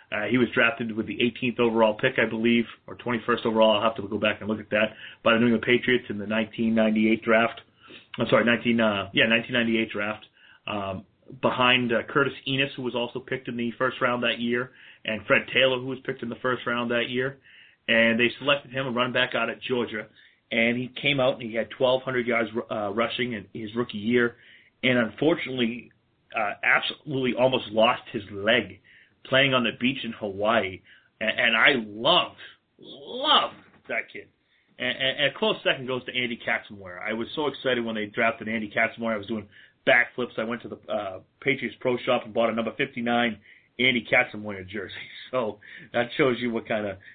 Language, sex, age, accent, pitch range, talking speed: English, male, 30-49, American, 110-125 Hz, 195 wpm